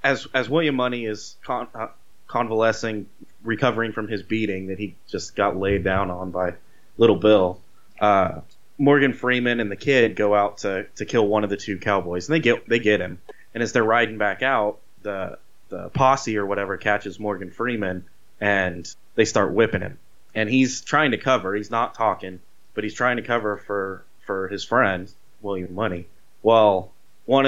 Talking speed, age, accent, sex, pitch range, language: 185 wpm, 20-39, American, male, 95-120 Hz, English